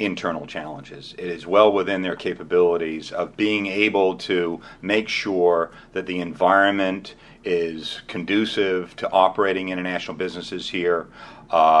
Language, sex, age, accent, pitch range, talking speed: English, male, 40-59, American, 85-105 Hz, 125 wpm